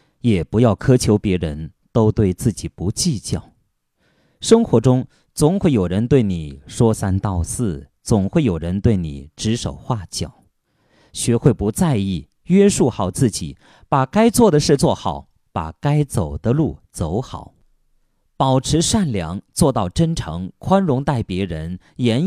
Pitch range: 95-140 Hz